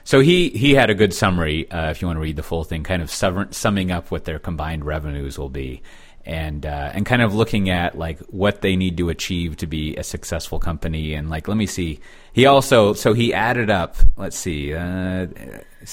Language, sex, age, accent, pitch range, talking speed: English, male, 30-49, American, 80-105 Hz, 225 wpm